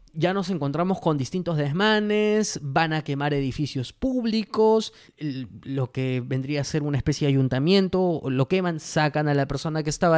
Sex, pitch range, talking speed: male, 145-195 Hz, 165 wpm